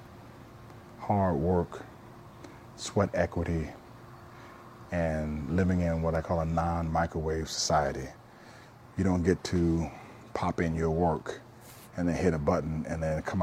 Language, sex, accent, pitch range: English, male, American, 80-95 Hz